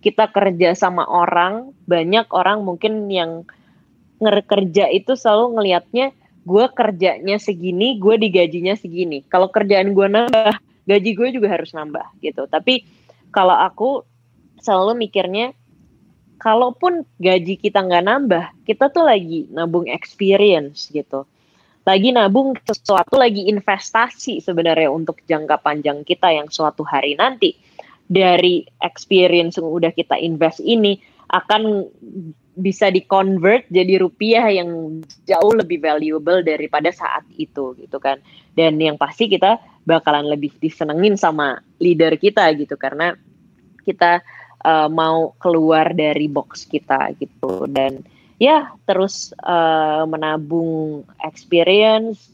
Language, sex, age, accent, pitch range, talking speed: Indonesian, female, 20-39, native, 160-210 Hz, 120 wpm